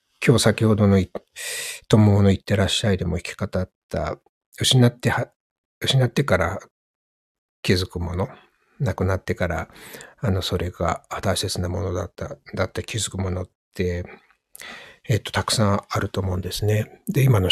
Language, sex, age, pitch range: Japanese, male, 60-79, 90-115 Hz